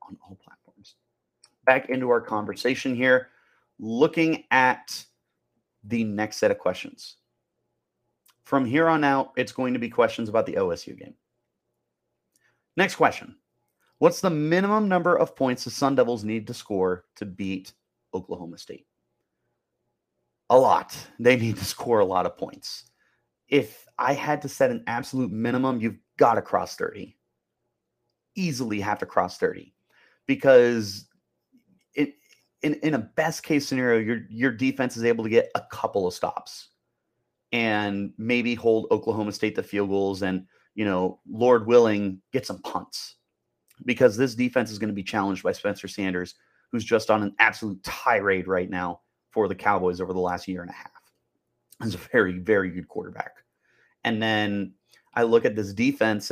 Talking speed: 160 wpm